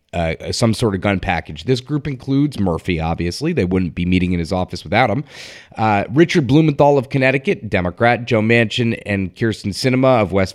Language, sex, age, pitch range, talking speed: English, male, 30-49, 95-125 Hz, 190 wpm